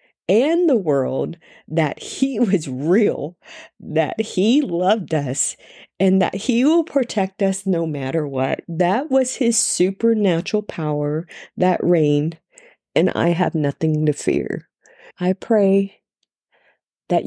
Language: English